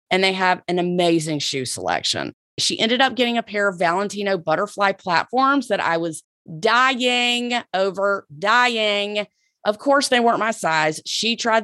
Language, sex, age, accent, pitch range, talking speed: English, female, 30-49, American, 175-245 Hz, 160 wpm